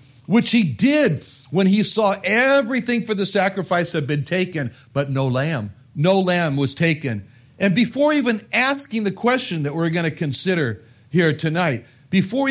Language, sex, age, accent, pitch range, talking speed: English, male, 60-79, American, 140-205 Hz, 165 wpm